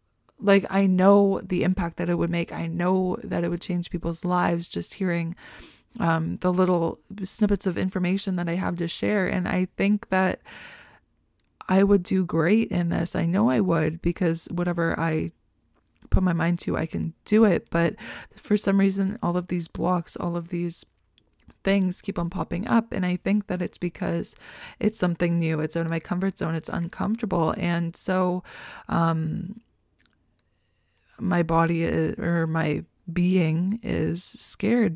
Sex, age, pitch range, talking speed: female, 20-39, 165-190 Hz, 170 wpm